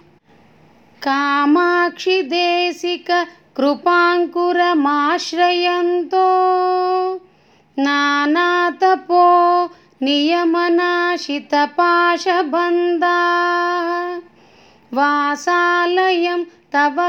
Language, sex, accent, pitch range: Telugu, female, native, 300-355 Hz